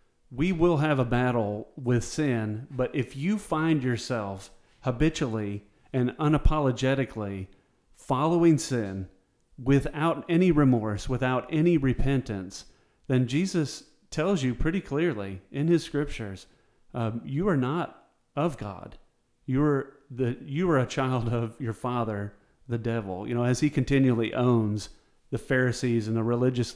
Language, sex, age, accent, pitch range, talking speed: English, male, 40-59, American, 120-155 Hz, 135 wpm